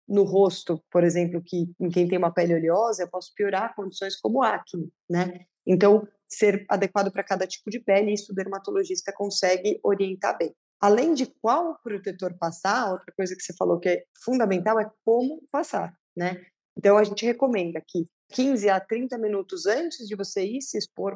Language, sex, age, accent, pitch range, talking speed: Portuguese, female, 20-39, Brazilian, 185-225 Hz, 180 wpm